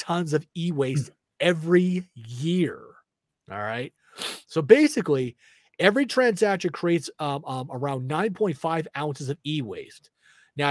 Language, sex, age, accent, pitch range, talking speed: English, male, 30-49, American, 135-180 Hz, 110 wpm